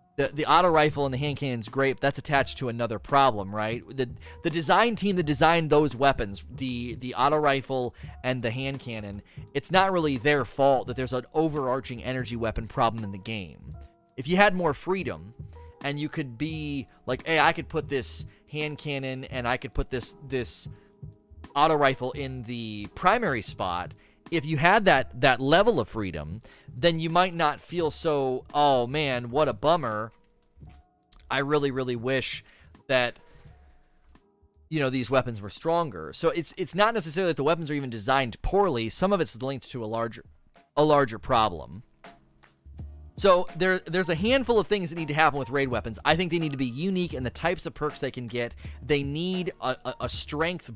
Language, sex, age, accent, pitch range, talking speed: English, male, 30-49, American, 115-155 Hz, 190 wpm